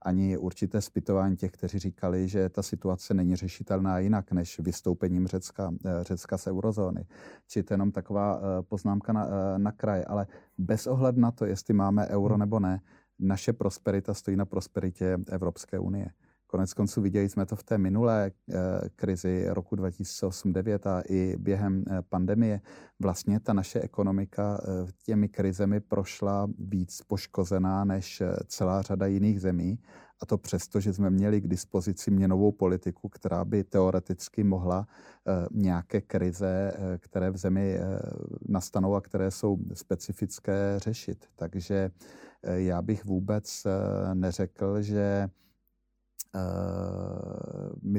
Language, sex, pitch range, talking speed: Czech, male, 95-105 Hz, 130 wpm